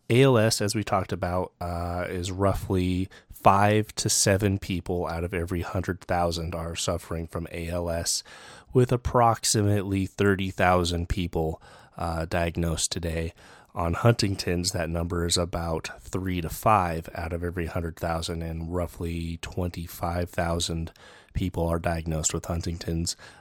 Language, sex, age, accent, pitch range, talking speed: English, male, 30-49, American, 85-95 Hz, 125 wpm